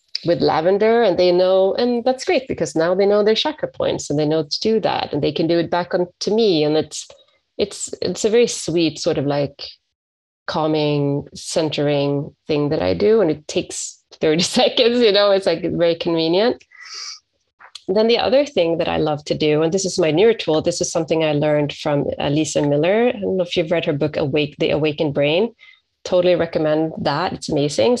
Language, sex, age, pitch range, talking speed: English, female, 30-49, 150-190 Hz, 210 wpm